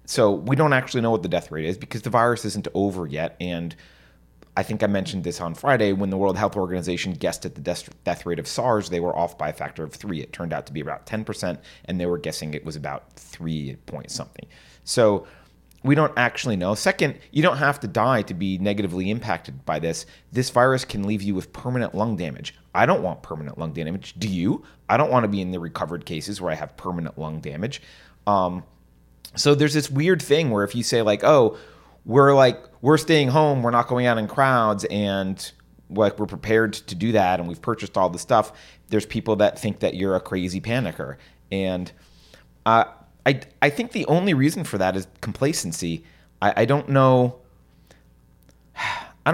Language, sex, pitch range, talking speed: English, male, 90-125 Hz, 205 wpm